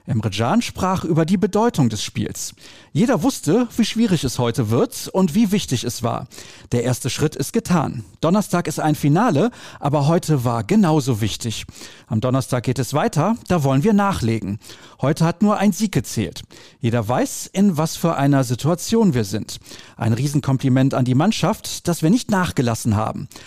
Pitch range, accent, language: 120-170 Hz, German, German